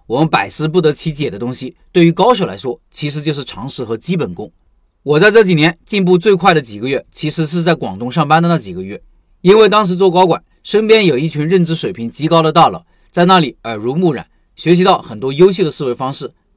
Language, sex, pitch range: Chinese, male, 140-185 Hz